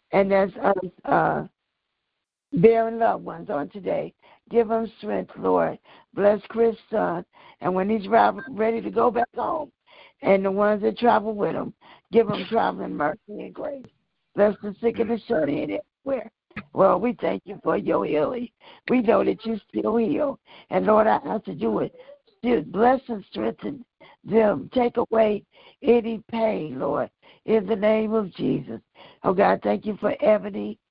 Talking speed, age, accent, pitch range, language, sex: 165 wpm, 60-79, American, 200-230 Hz, English, female